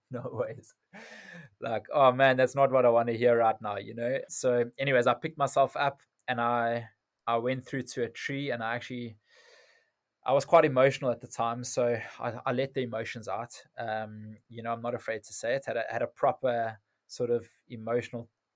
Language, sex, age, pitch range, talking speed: English, male, 20-39, 115-130 Hz, 205 wpm